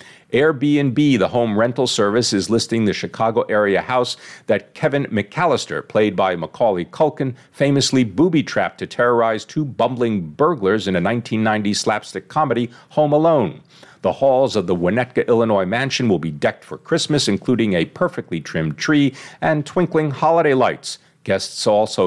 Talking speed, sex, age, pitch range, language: 145 wpm, male, 50-69, 105-145 Hz, English